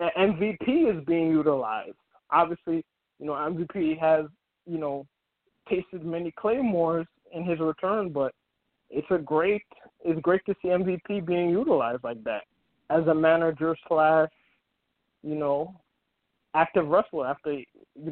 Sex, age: male, 20-39